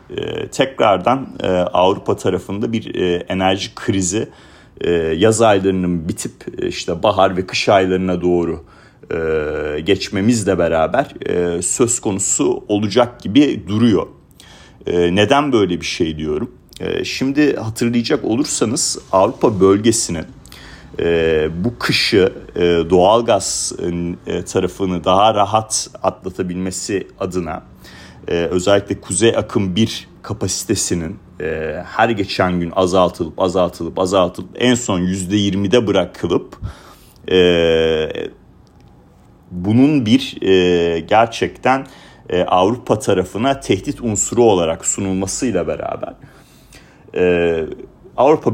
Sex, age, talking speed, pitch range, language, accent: male, 40-59, 95 wpm, 90-115 Hz, Turkish, native